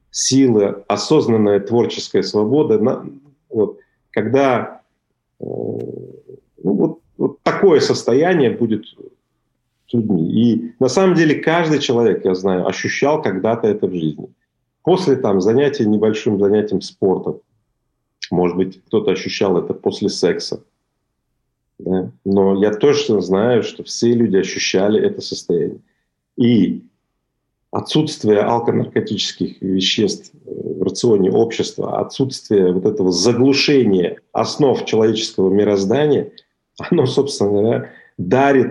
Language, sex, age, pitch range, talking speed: Russian, male, 40-59, 100-130 Hz, 100 wpm